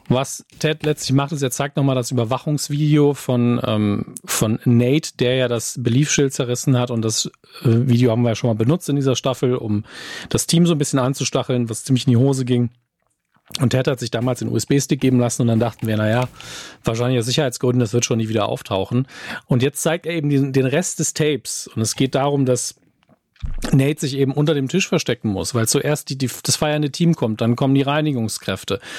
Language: German